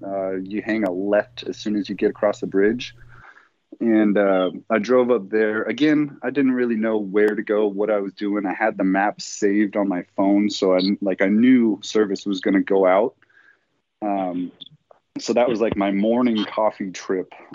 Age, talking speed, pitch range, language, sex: 30-49, 200 wpm, 95-115 Hz, English, male